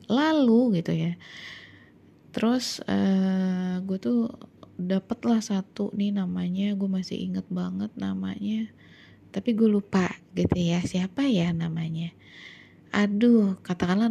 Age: 20-39